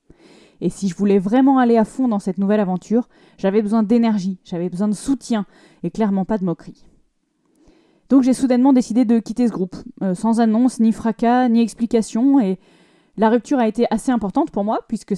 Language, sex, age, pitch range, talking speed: French, female, 20-39, 195-240 Hz, 190 wpm